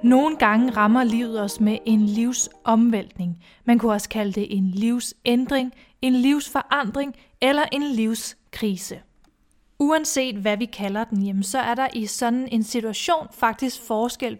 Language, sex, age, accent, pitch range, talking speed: Danish, female, 30-49, native, 215-255 Hz, 140 wpm